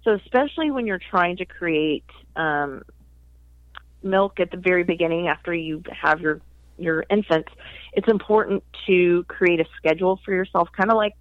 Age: 30-49